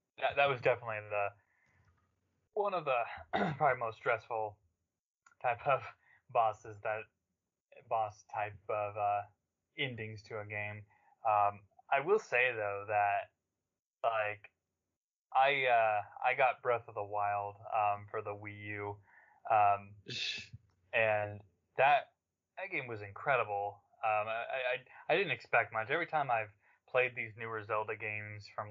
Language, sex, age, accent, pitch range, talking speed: English, male, 20-39, American, 100-115 Hz, 140 wpm